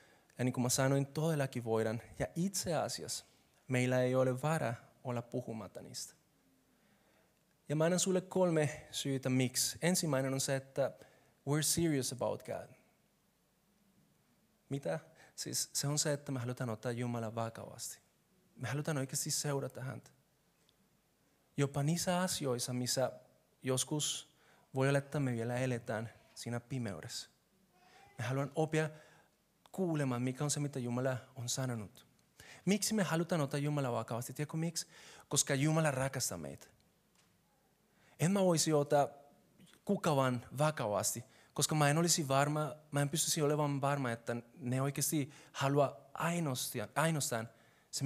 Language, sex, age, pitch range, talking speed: Finnish, male, 30-49, 125-150 Hz, 130 wpm